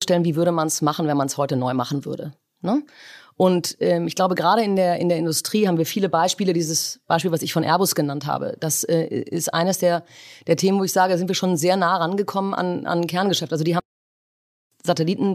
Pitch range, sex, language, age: 150-175 Hz, female, German, 30-49